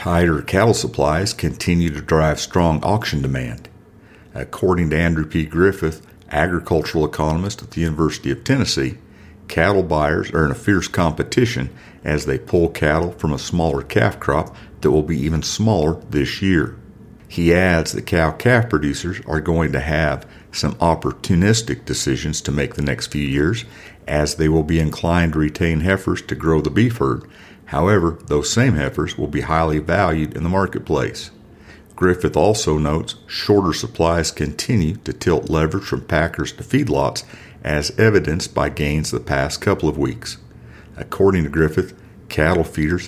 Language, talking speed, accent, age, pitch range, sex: English, 155 wpm, American, 50-69, 75-90 Hz, male